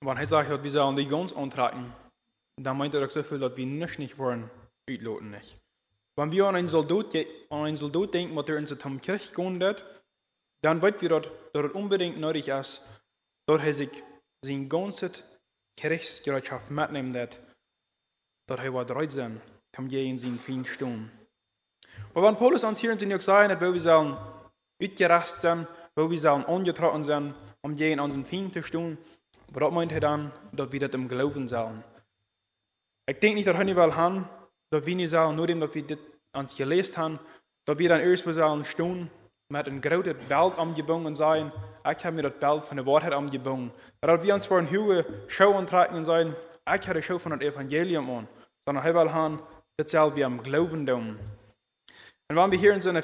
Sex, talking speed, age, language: male, 170 wpm, 20-39, English